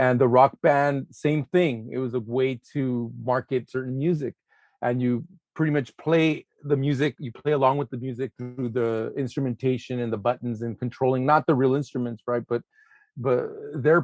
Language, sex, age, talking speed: English, male, 30-49, 185 wpm